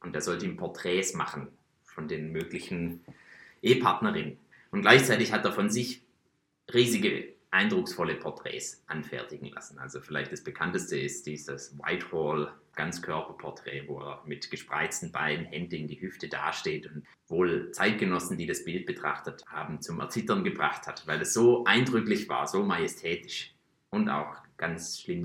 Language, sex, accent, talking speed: German, male, German, 145 wpm